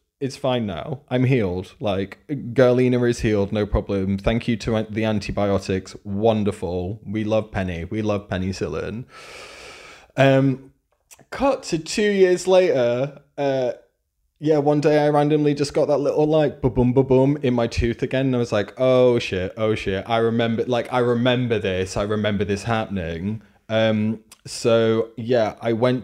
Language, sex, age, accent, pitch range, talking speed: English, male, 20-39, British, 105-130 Hz, 160 wpm